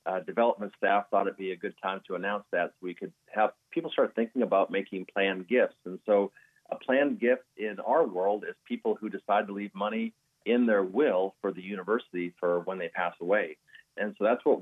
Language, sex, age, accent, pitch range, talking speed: English, male, 40-59, American, 100-120 Hz, 220 wpm